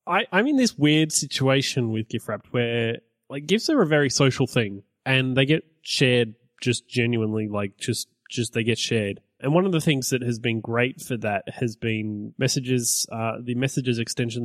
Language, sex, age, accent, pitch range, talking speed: English, male, 20-39, Australian, 115-145 Hz, 195 wpm